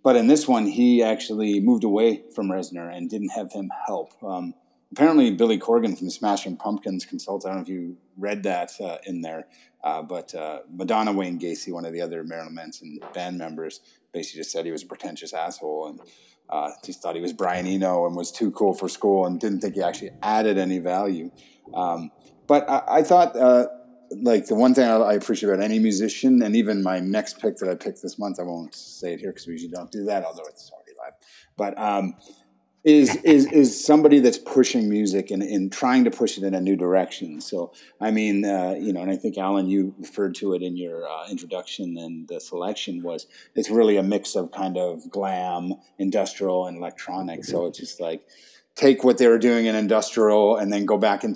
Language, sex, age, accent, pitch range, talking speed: English, male, 30-49, American, 90-120 Hz, 215 wpm